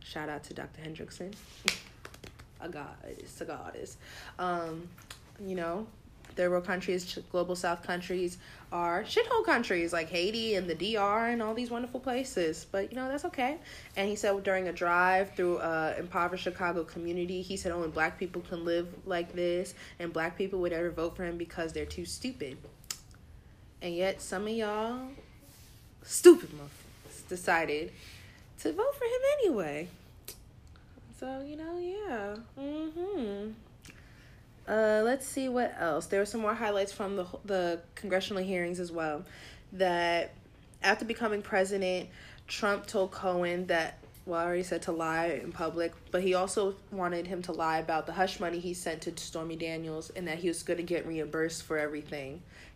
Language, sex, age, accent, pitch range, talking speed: English, female, 20-39, American, 165-205 Hz, 165 wpm